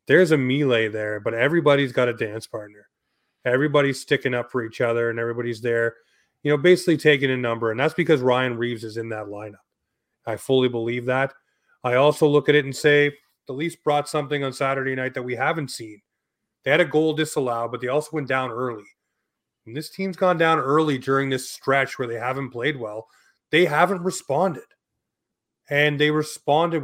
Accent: American